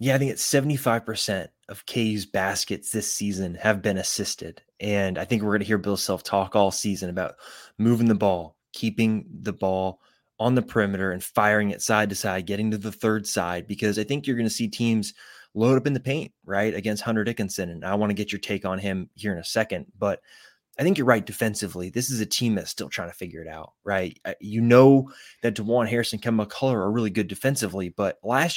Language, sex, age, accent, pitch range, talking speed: English, male, 20-39, American, 95-115 Hz, 225 wpm